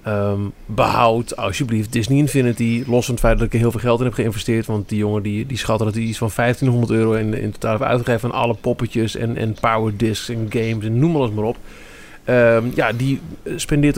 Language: Dutch